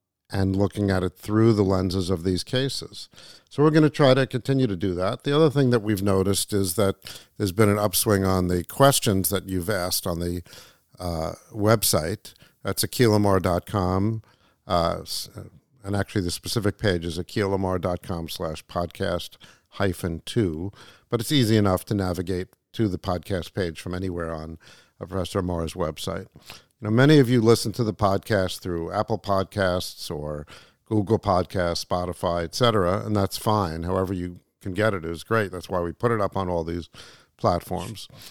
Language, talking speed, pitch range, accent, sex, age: English, 170 wpm, 90-110 Hz, American, male, 50-69